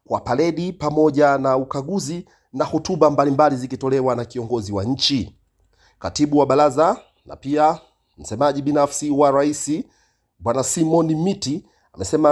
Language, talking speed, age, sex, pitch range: Swahili, 125 wpm, 40-59, male, 135-165 Hz